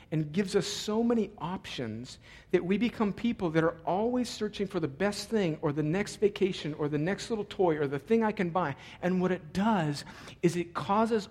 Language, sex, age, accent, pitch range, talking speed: English, male, 50-69, American, 145-200 Hz, 210 wpm